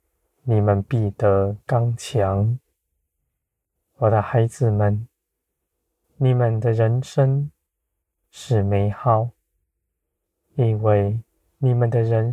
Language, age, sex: Chinese, 20-39, male